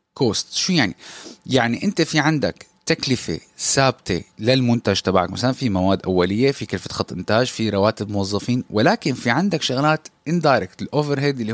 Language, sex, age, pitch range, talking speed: Arabic, male, 20-39, 110-135 Hz, 150 wpm